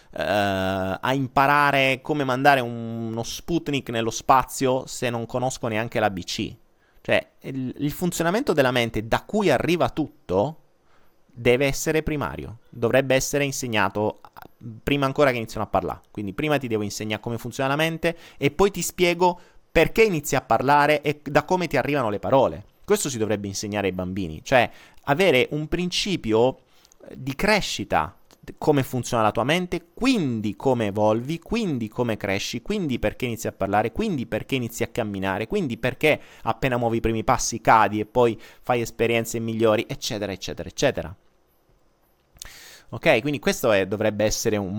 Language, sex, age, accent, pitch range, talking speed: Italian, male, 30-49, native, 105-140 Hz, 155 wpm